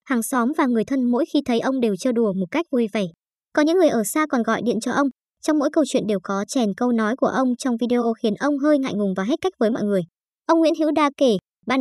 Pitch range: 220-290 Hz